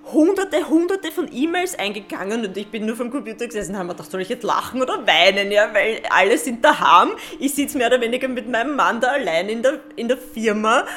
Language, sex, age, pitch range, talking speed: German, female, 20-39, 200-255 Hz, 220 wpm